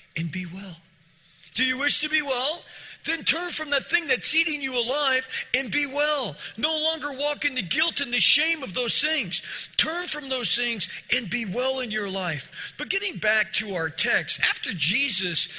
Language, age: English, 40-59